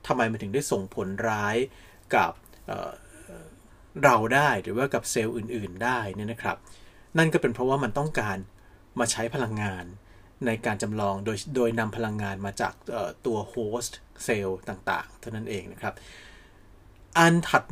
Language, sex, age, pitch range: Thai, male, 30-49, 100-150 Hz